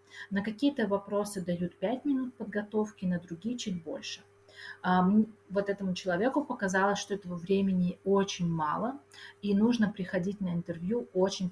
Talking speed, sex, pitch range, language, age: 135 wpm, female, 170-205 Hz, Russian, 30-49